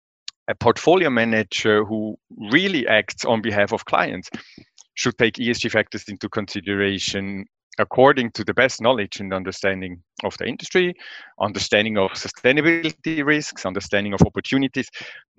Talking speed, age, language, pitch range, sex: 130 wpm, 30-49, English, 105-135 Hz, male